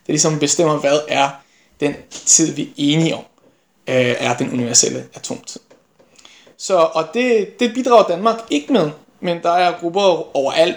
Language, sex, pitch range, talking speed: Danish, male, 145-200 Hz, 160 wpm